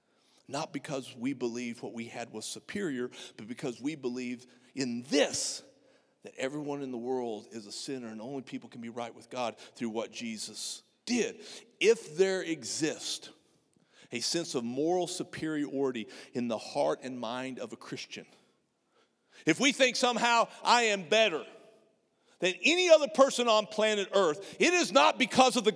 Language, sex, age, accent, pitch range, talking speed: English, male, 50-69, American, 125-210 Hz, 165 wpm